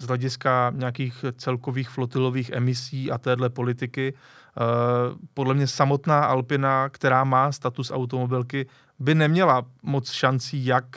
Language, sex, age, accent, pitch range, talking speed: Czech, male, 30-49, native, 125-145 Hz, 125 wpm